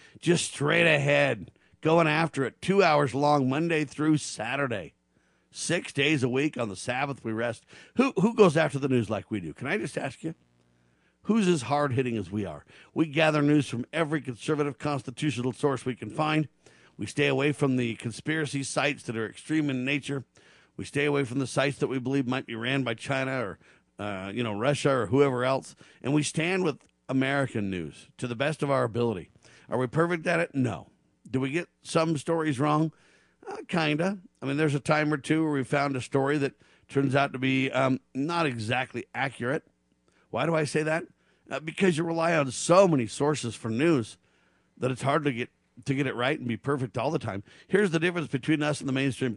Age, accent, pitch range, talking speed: 50-69, American, 125-155 Hz, 210 wpm